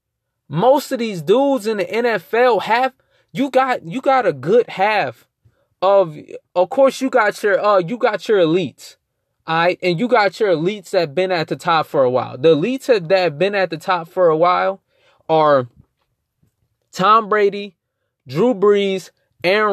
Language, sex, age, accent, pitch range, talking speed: English, male, 20-39, American, 150-200 Hz, 185 wpm